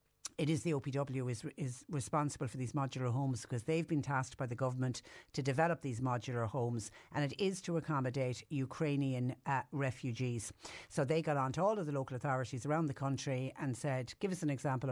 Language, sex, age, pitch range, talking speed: English, female, 60-79, 130-160 Hz, 200 wpm